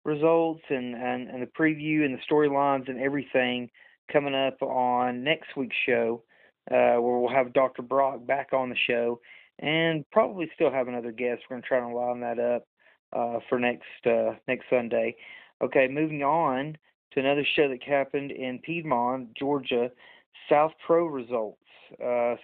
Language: English